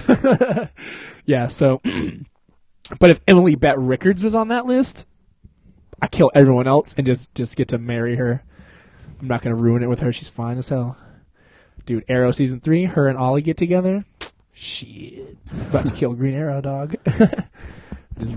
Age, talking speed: 20-39, 165 wpm